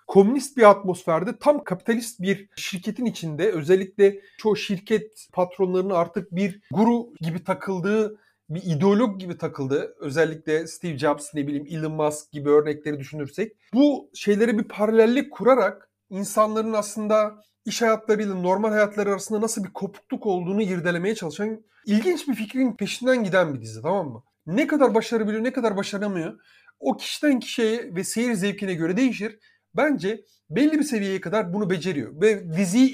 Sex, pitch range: male, 155-220 Hz